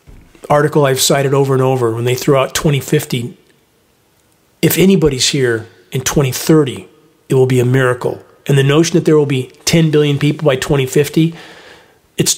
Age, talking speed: 40-59, 165 wpm